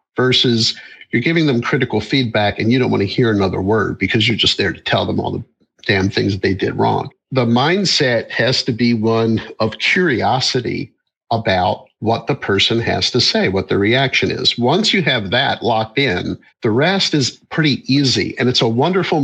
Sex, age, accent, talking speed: male, 50-69, American, 195 wpm